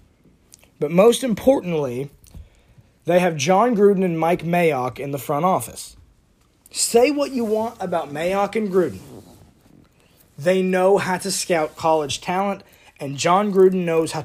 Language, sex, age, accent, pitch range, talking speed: English, male, 30-49, American, 150-210 Hz, 145 wpm